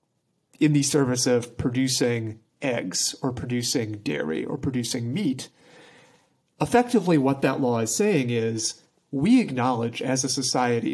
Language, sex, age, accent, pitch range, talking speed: English, male, 40-59, American, 120-150 Hz, 130 wpm